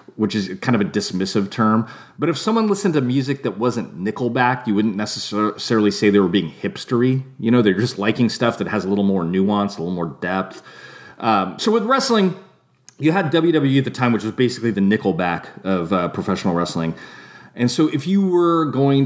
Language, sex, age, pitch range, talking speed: English, male, 30-49, 105-145 Hz, 205 wpm